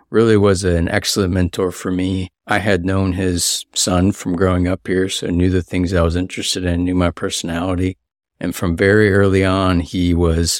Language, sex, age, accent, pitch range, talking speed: English, male, 50-69, American, 85-95 Hz, 200 wpm